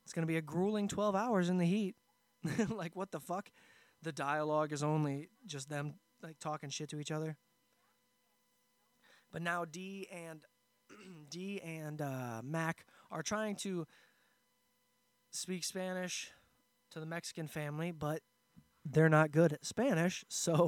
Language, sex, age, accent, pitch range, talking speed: English, male, 20-39, American, 150-195 Hz, 150 wpm